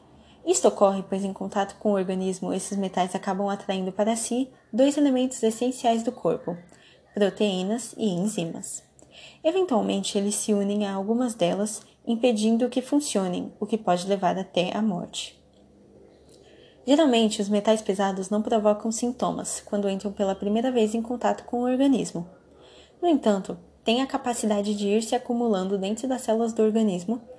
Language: Portuguese